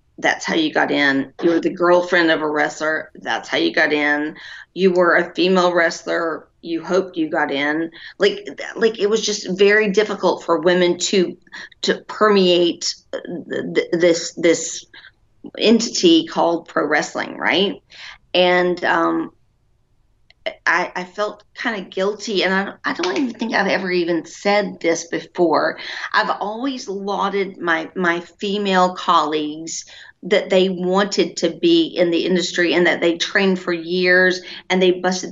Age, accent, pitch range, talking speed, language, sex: 40-59, American, 170-200 Hz, 155 wpm, English, female